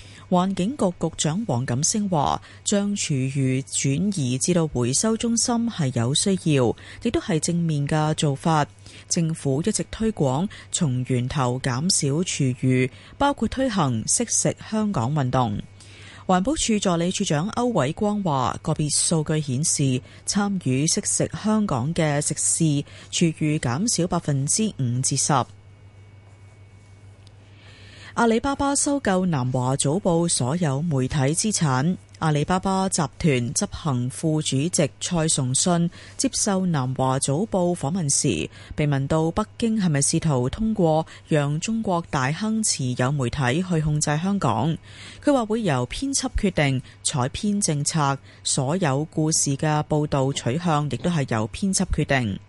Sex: female